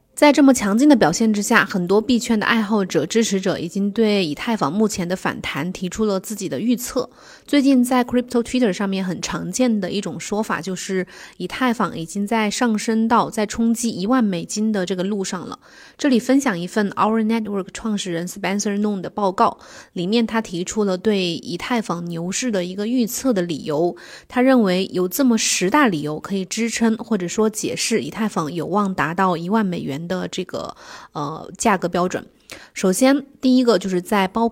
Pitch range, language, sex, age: 185-230 Hz, Chinese, female, 20-39